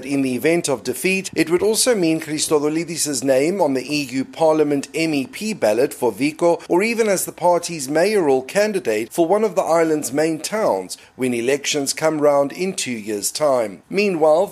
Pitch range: 140-185 Hz